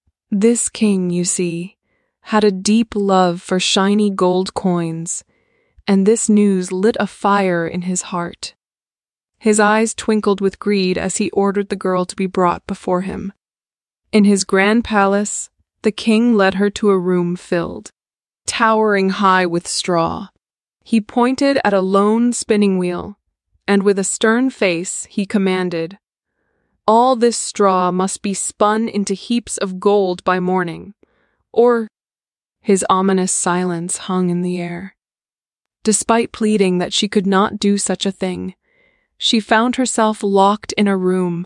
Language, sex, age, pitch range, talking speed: English, female, 20-39, 185-215 Hz, 150 wpm